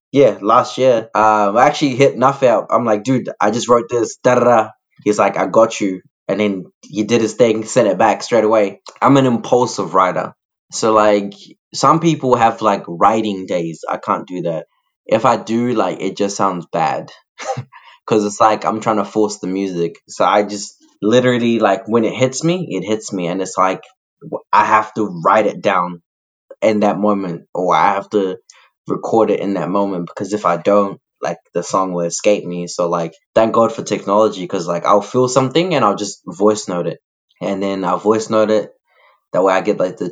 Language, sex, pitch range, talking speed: English, male, 90-110 Hz, 210 wpm